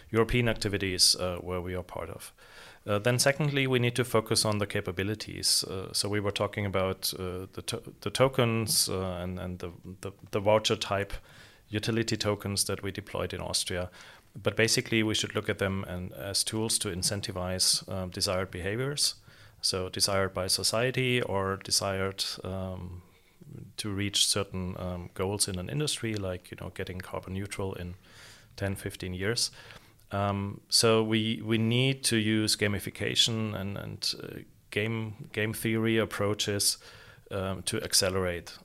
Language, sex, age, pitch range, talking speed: English, male, 30-49, 95-110 Hz, 160 wpm